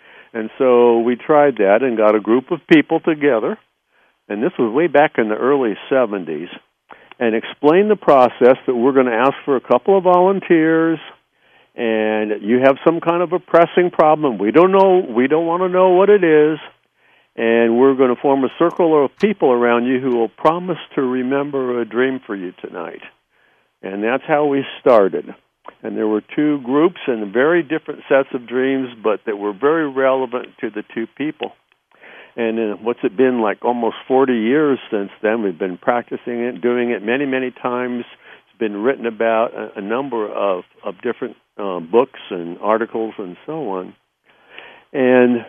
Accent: American